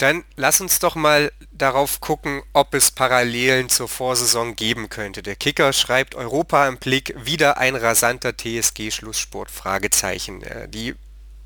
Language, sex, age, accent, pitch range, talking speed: German, male, 30-49, German, 115-140 Hz, 130 wpm